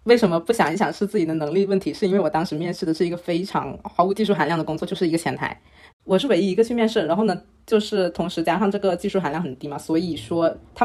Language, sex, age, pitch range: Chinese, female, 20-39, 155-200 Hz